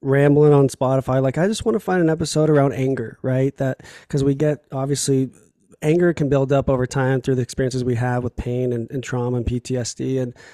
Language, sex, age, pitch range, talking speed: English, male, 20-39, 130-155 Hz, 215 wpm